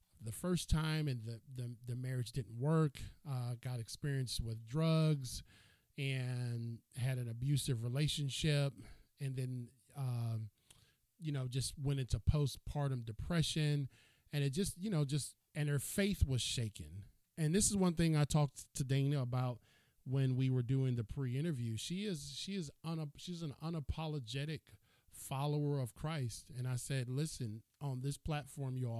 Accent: American